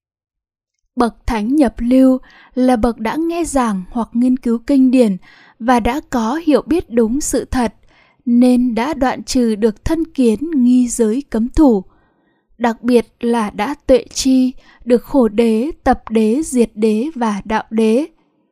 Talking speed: 160 wpm